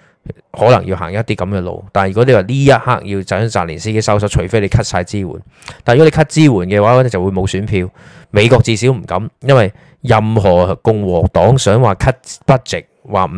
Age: 20-39